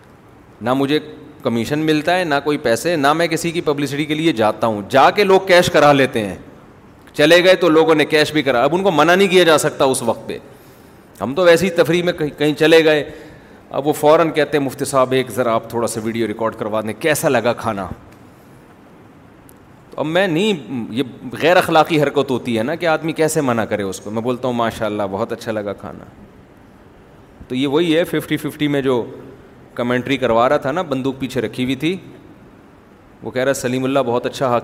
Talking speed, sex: 210 wpm, male